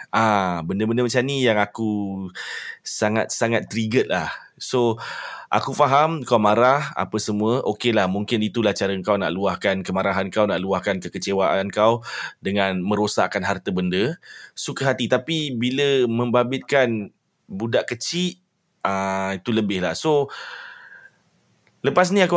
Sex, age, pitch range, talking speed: male, 20-39, 105-140 Hz, 125 wpm